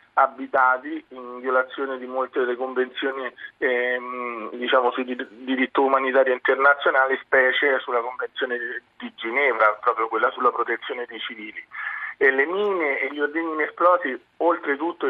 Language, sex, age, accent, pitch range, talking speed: Italian, male, 40-59, native, 130-155 Hz, 125 wpm